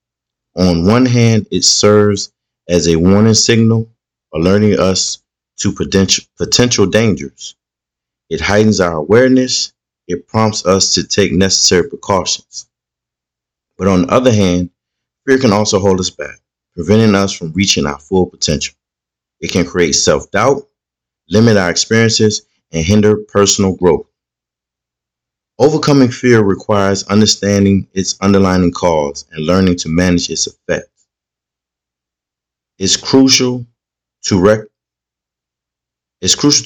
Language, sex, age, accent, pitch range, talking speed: English, male, 30-49, American, 80-110 Hz, 115 wpm